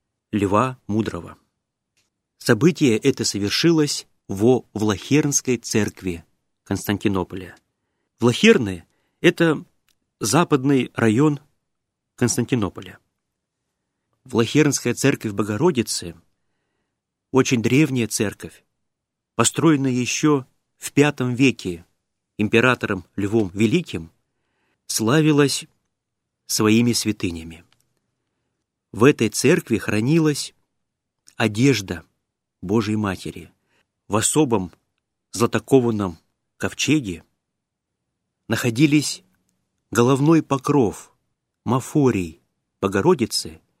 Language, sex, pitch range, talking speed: Russian, male, 100-135 Hz, 65 wpm